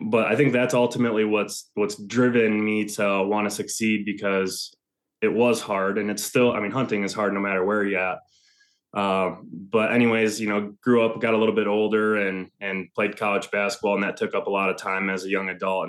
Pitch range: 100-110 Hz